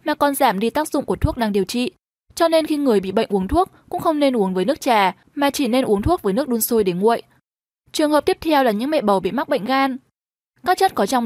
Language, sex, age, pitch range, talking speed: Vietnamese, female, 10-29, 220-300 Hz, 280 wpm